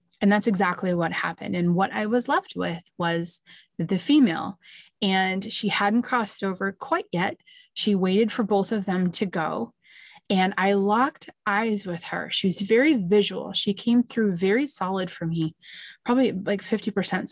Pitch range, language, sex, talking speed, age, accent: 185-225 Hz, English, female, 170 wpm, 30-49, American